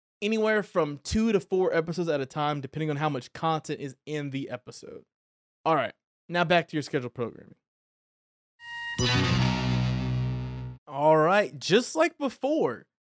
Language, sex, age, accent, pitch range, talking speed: English, male, 20-39, American, 145-220 Hz, 140 wpm